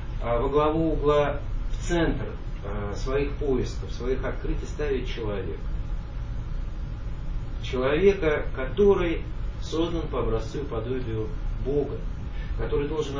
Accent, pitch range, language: native, 110-150 Hz, Russian